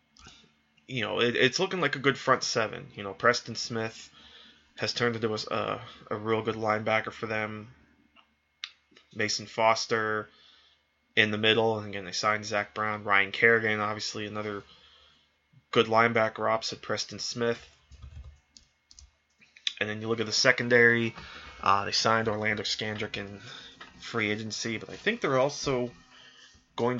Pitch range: 95-115 Hz